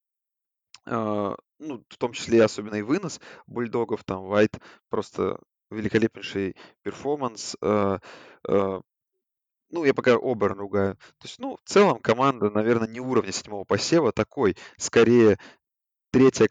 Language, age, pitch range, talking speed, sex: Russian, 20-39, 100-120 Hz, 120 wpm, male